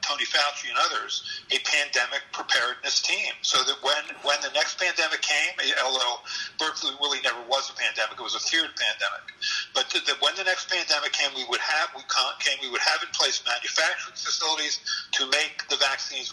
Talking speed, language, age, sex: 185 wpm, English, 50-69, male